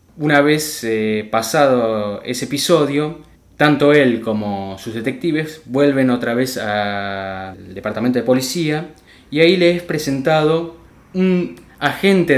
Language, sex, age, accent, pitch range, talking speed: Spanish, male, 20-39, Argentinian, 110-155 Hz, 120 wpm